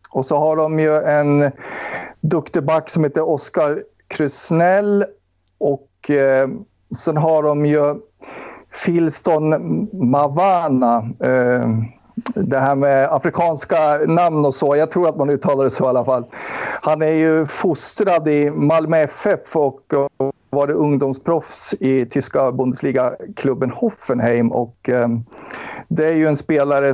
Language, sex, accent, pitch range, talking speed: Swedish, male, native, 125-155 Hz, 135 wpm